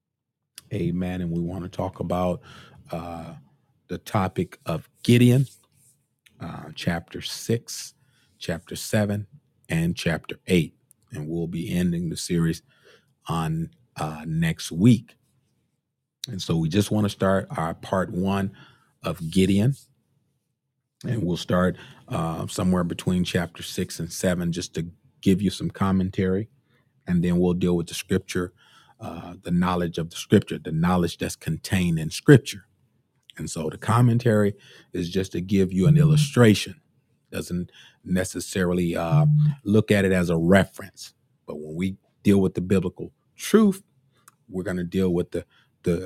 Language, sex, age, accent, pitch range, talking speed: English, male, 40-59, American, 85-115 Hz, 145 wpm